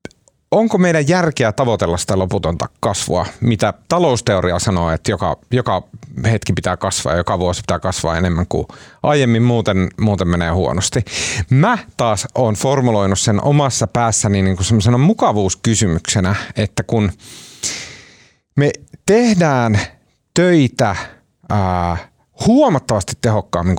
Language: Finnish